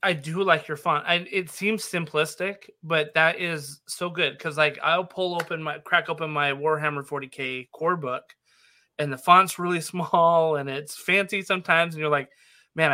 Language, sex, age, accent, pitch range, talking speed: English, male, 20-39, American, 140-160 Hz, 180 wpm